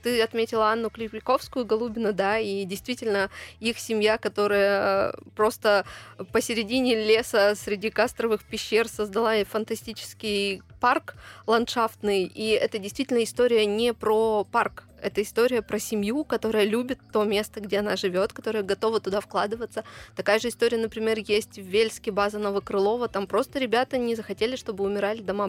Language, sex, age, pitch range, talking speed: Russian, female, 20-39, 205-230 Hz, 140 wpm